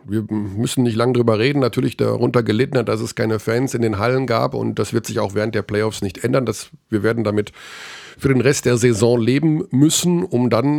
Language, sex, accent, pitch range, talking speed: German, male, German, 120-175 Hz, 220 wpm